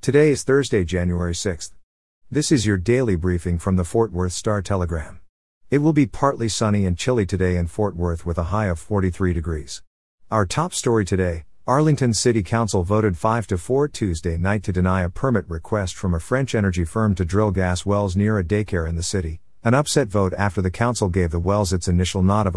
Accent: American